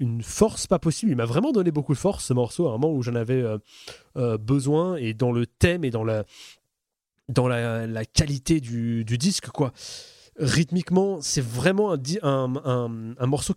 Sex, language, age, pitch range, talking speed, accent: male, French, 30-49, 120-155 Hz, 200 wpm, French